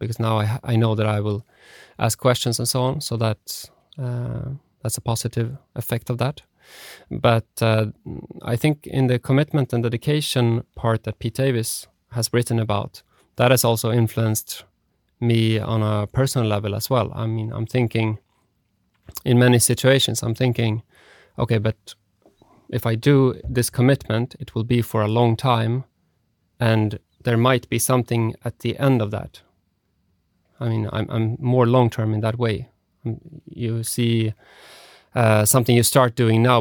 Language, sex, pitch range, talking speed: English, male, 110-125 Hz, 160 wpm